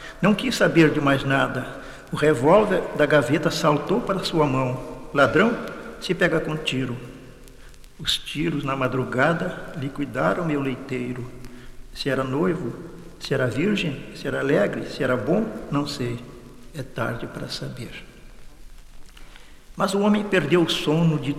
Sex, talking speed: male, 145 wpm